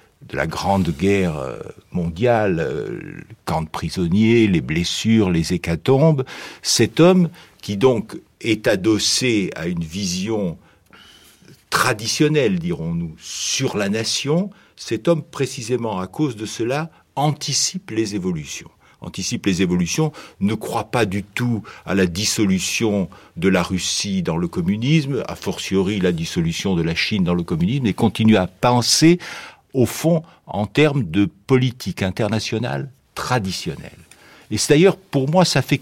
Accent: French